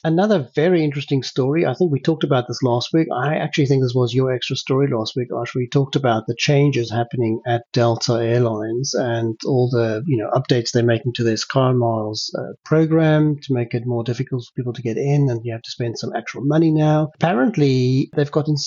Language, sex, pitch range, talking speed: English, male, 120-145 Hz, 220 wpm